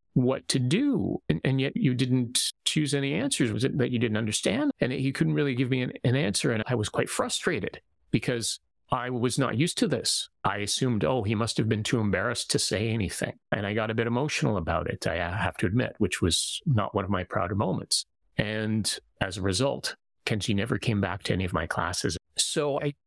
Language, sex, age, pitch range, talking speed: English, male, 30-49, 105-135 Hz, 220 wpm